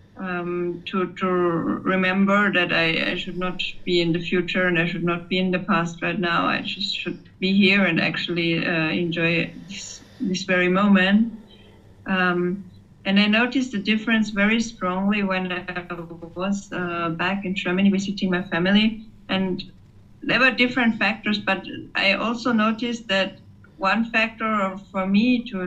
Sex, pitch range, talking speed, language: female, 180-210 Hz, 160 wpm, English